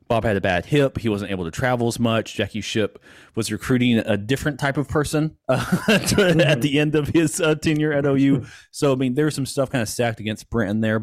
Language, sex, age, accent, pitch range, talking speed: English, male, 30-49, American, 105-125 Hz, 235 wpm